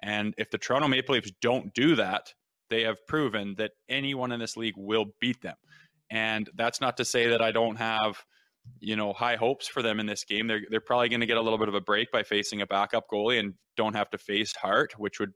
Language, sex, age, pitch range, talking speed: English, male, 20-39, 105-125 Hz, 245 wpm